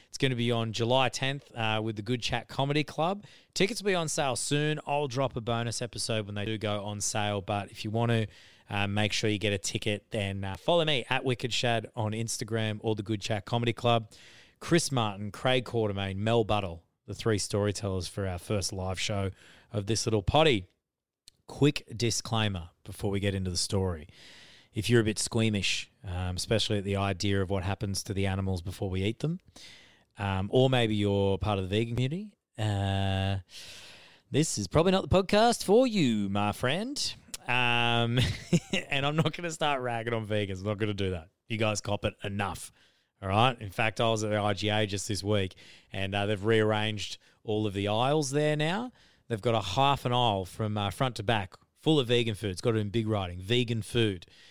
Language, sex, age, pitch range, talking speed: English, male, 30-49, 100-125 Hz, 210 wpm